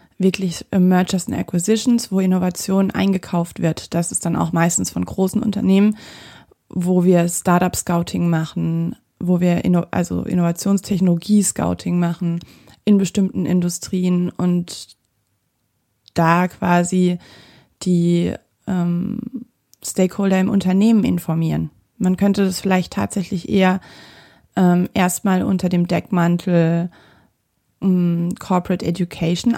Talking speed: 105 wpm